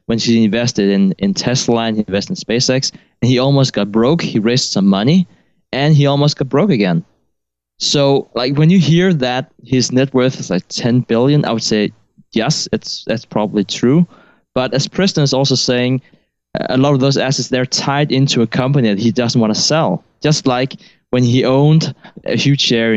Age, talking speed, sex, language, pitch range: 20-39, 200 wpm, male, English, 115-150 Hz